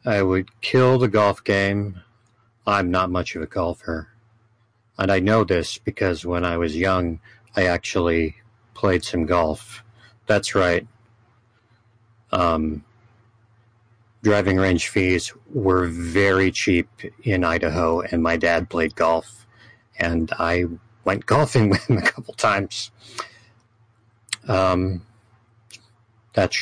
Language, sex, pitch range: English, male, 95-115 Hz